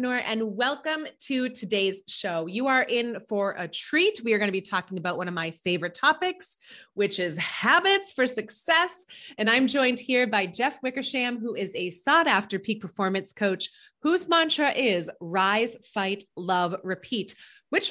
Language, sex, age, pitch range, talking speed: English, female, 30-49, 195-290 Hz, 170 wpm